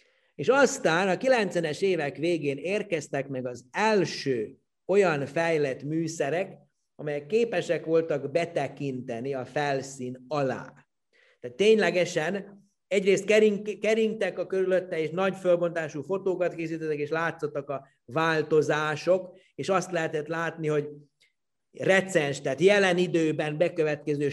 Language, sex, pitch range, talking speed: Hungarian, male, 145-190 Hz, 110 wpm